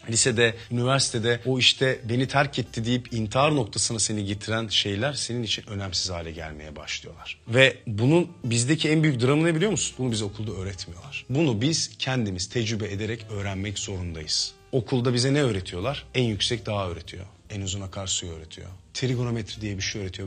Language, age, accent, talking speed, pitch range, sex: Turkish, 40-59, native, 165 wpm, 95-125 Hz, male